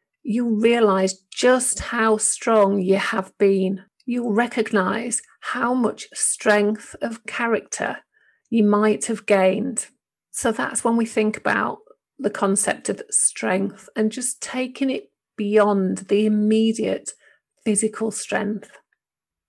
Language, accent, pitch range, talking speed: English, British, 200-235 Hz, 115 wpm